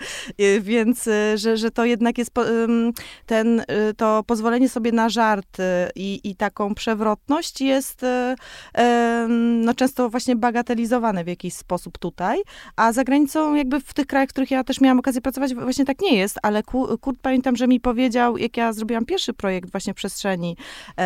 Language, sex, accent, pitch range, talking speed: Polish, female, native, 205-250 Hz, 160 wpm